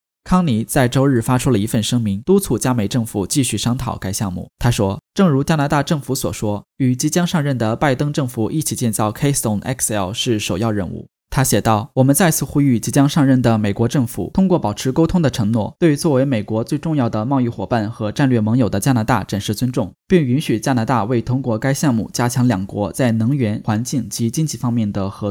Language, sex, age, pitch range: Chinese, male, 10-29, 110-140 Hz